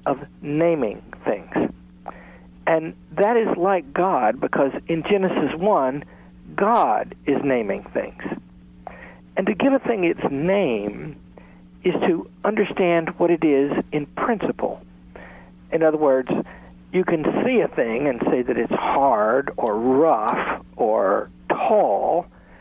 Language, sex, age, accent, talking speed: English, male, 60-79, American, 125 wpm